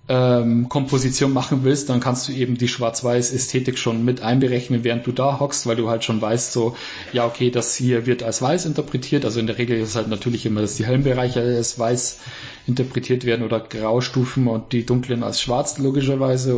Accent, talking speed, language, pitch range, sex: German, 200 wpm, German, 115-125 Hz, male